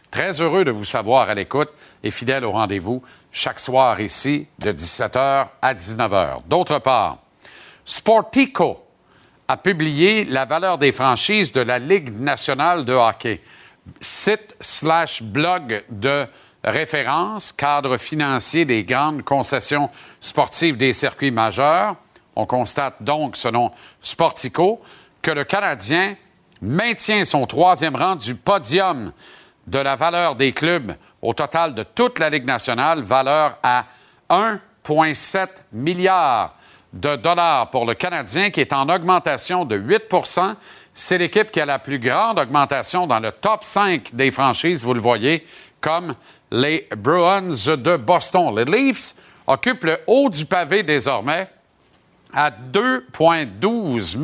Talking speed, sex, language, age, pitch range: 135 wpm, male, French, 50-69, 130-180 Hz